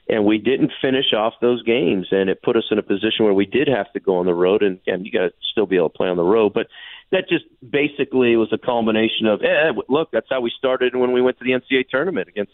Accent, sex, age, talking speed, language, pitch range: American, male, 40-59, 280 wpm, English, 95-115 Hz